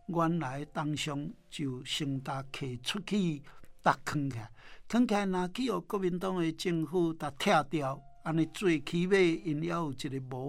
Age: 60-79